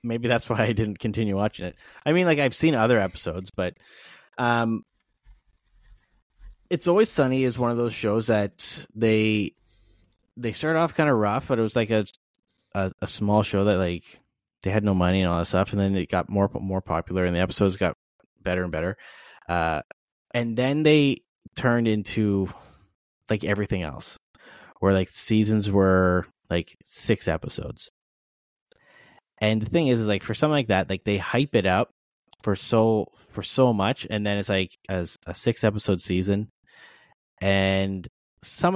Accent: American